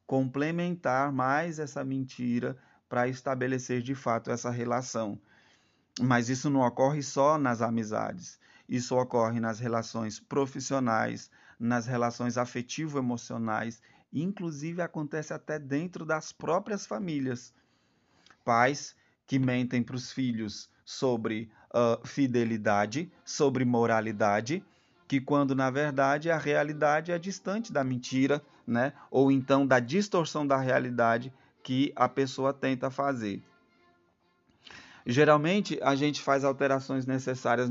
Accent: Brazilian